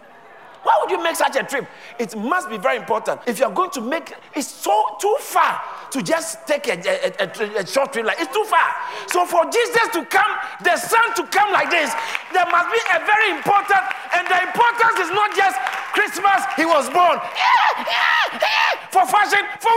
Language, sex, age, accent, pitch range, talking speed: English, male, 50-69, Nigerian, 270-405 Hz, 190 wpm